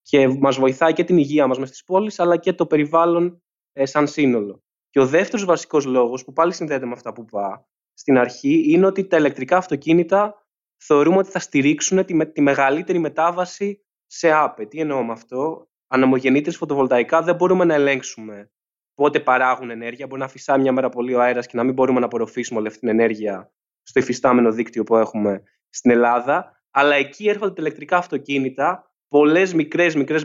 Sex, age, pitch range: male, 20-39, 130-185 Hz